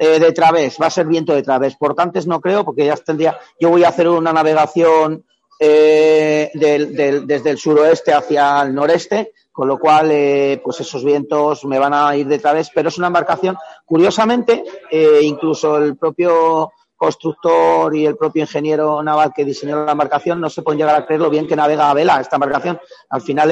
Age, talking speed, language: 40-59, 195 wpm, Spanish